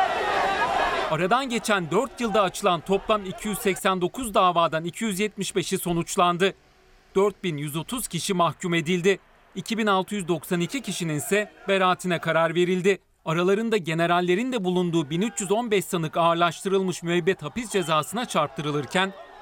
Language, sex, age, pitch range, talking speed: Turkish, male, 40-59, 170-200 Hz, 95 wpm